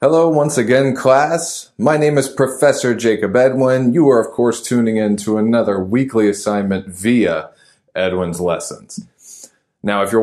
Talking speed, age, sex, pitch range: 155 wpm, 20-39, male, 100-125 Hz